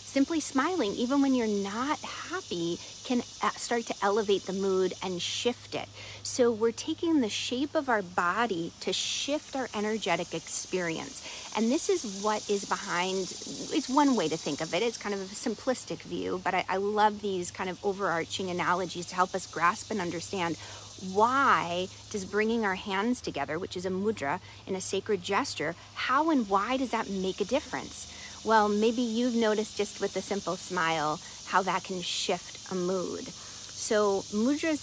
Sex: female